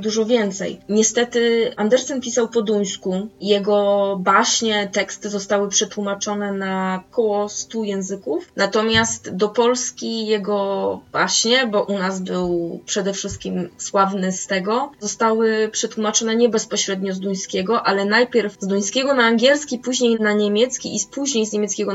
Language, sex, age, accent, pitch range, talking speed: Polish, female, 20-39, native, 205-235 Hz, 135 wpm